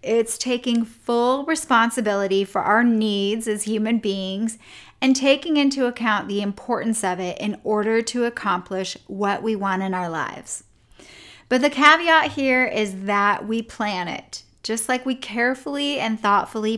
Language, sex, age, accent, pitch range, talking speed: English, female, 30-49, American, 195-240 Hz, 155 wpm